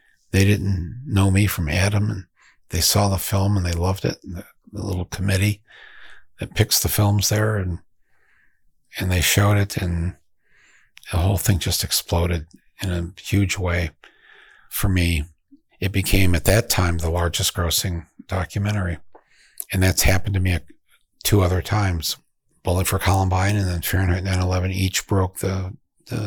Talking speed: 160 wpm